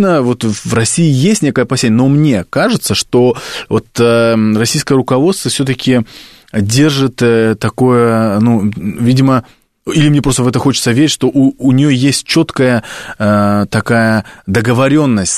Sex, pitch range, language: male, 110-135 Hz, Russian